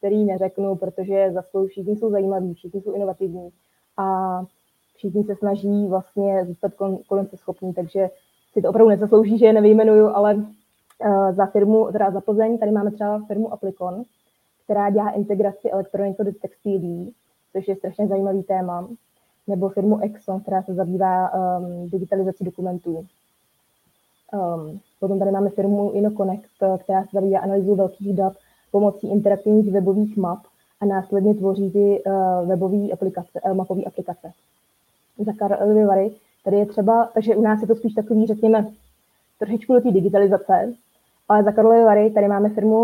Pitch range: 190-210 Hz